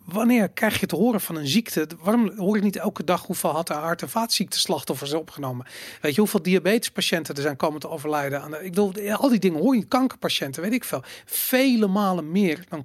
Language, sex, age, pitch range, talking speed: Dutch, male, 40-59, 155-205 Hz, 220 wpm